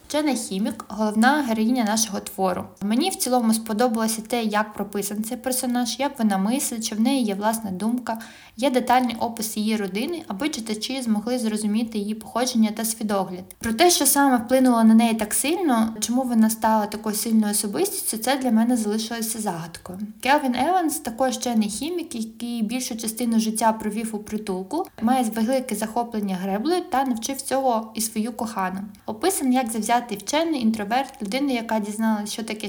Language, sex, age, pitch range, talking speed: Ukrainian, female, 20-39, 215-250 Hz, 165 wpm